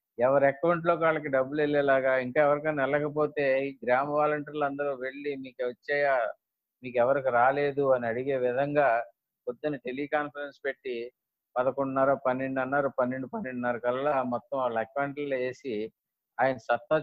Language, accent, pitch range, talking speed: Telugu, native, 125-145 Hz, 125 wpm